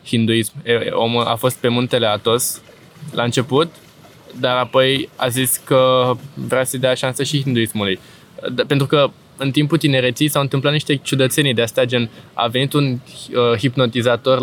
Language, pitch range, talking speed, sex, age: Romanian, 120-135 Hz, 145 wpm, male, 20-39